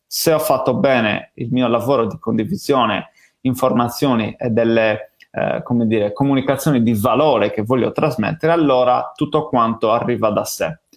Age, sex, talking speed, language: 30-49, male, 150 wpm, Italian